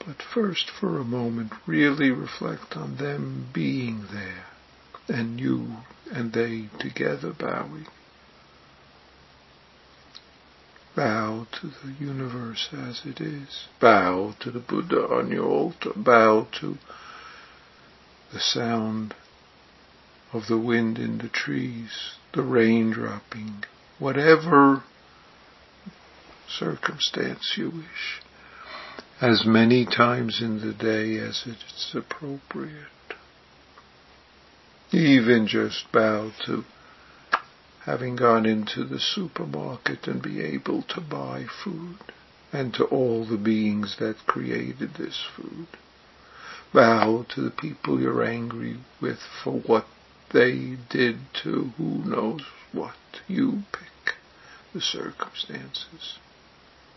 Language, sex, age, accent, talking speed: English, male, 60-79, American, 105 wpm